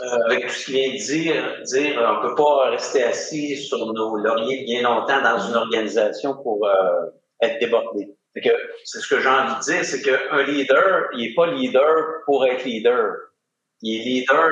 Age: 50-69